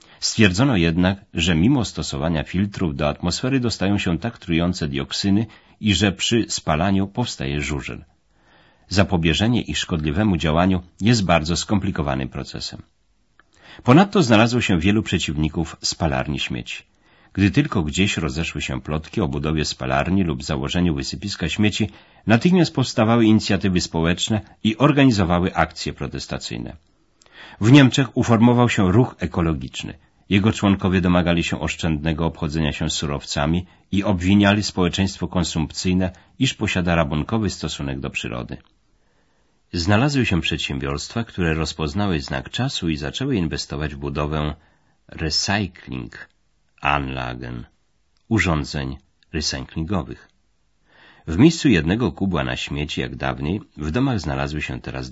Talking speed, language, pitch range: 120 wpm, Polish, 75-105 Hz